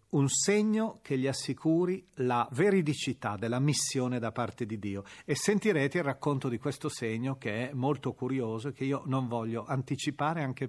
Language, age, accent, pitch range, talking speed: Italian, 40-59, native, 125-165 Hz, 175 wpm